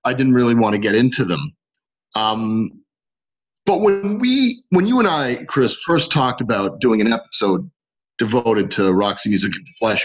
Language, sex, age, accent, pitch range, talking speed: English, male, 40-59, American, 110-155 Hz, 175 wpm